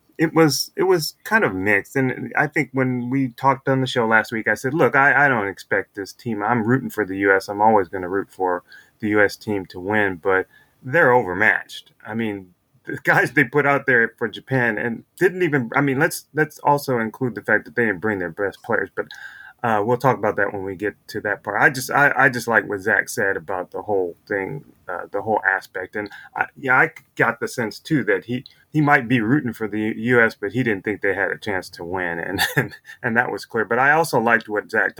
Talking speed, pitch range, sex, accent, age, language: 245 wpm, 105-135 Hz, male, American, 30-49, English